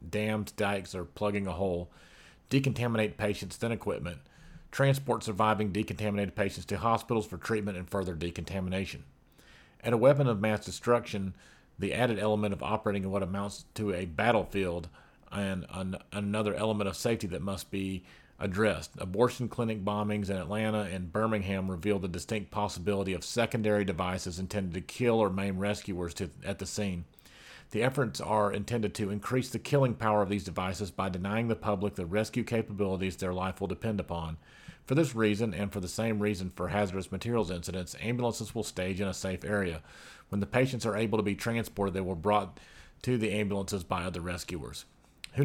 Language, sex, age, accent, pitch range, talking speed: English, male, 40-59, American, 95-110 Hz, 175 wpm